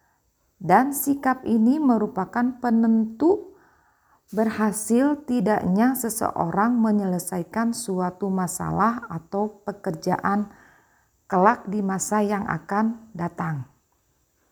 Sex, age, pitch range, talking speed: female, 40-59, 180-230 Hz, 80 wpm